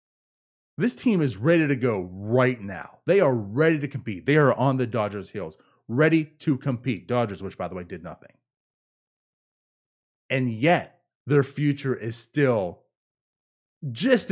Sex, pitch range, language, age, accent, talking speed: male, 120-165 Hz, English, 30-49, American, 150 wpm